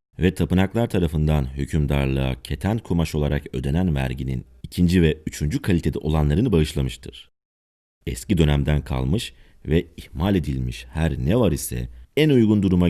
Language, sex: Turkish, male